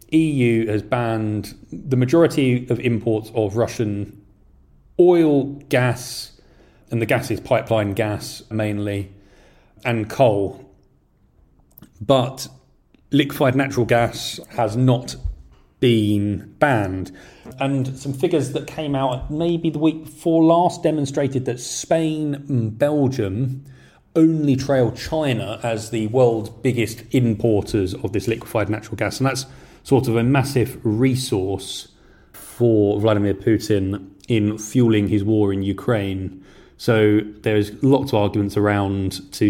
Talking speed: 120 wpm